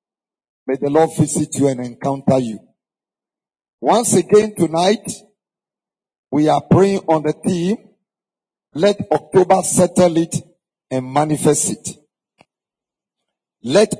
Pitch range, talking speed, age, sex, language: 145-185 Hz, 105 wpm, 50-69, male, English